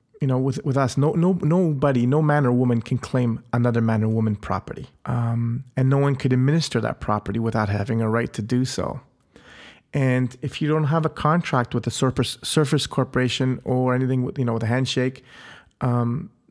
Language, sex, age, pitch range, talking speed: English, male, 30-49, 115-135 Hz, 200 wpm